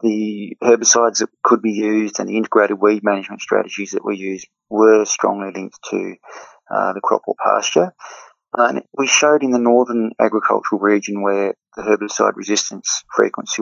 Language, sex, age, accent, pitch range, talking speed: English, male, 30-49, Australian, 100-115 Hz, 165 wpm